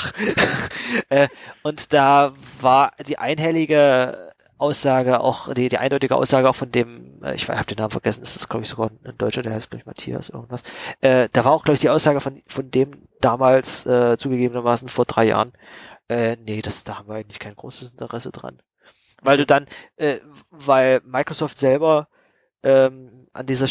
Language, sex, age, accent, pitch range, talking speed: German, male, 20-39, German, 125-140 Hz, 180 wpm